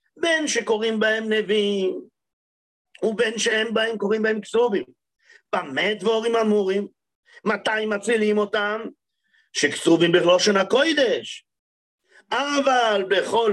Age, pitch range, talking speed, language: 50-69, 210-275 Hz, 100 wpm, English